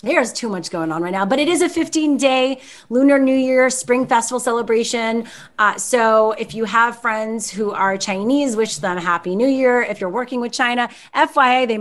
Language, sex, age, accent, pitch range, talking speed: English, female, 30-49, American, 200-275 Hz, 205 wpm